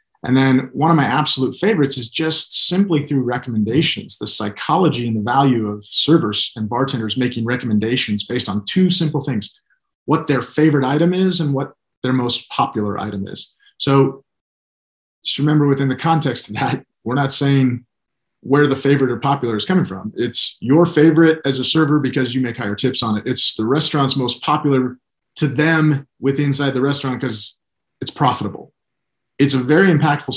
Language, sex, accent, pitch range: English, male, American, 115-145 Hz